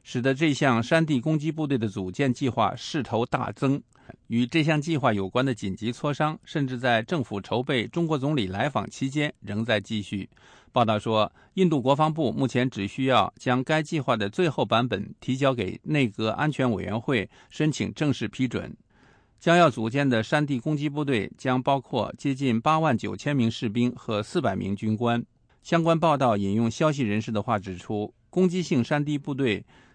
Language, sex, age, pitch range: English, male, 50-69, 115-150 Hz